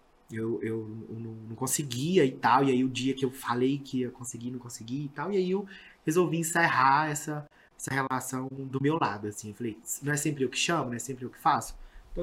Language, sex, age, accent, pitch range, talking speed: Portuguese, male, 20-39, Brazilian, 115-135 Hz, 230 wpm